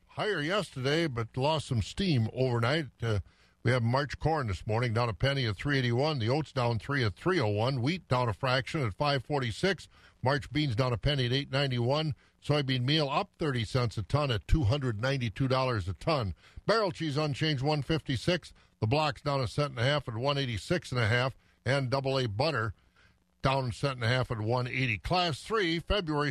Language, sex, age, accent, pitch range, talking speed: English, male, 50-69, American, 120-150 Hz, 220 wpm